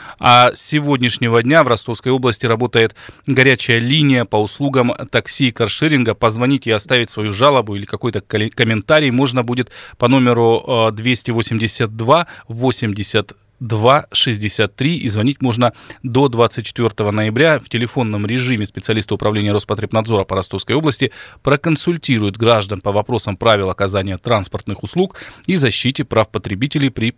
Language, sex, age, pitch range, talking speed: Russian, male, 20-39, 110-135 Hz, 125 wpm